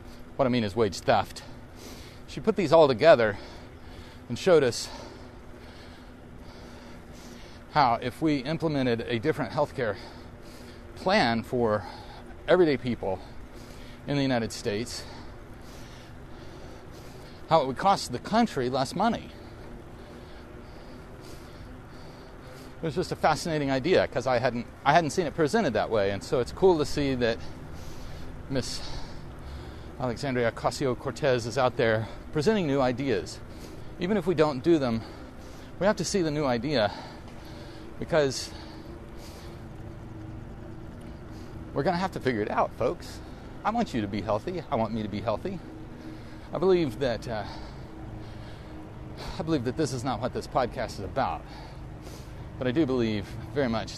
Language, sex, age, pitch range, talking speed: English, male, 40-59, 110-140 Hz, 140 wpm